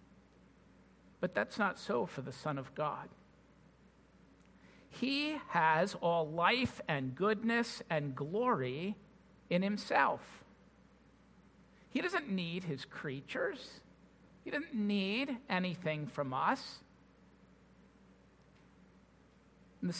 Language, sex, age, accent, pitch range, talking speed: English, male, 50-69, American, 175-225 Hz, 95 wpm